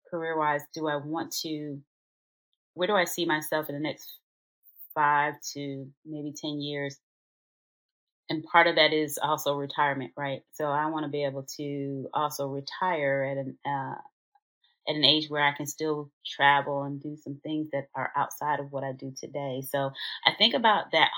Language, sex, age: English, female, 30-49